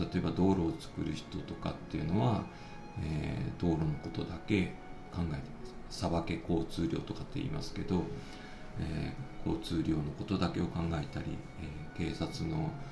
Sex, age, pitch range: male, 40-59, 80-110 Hz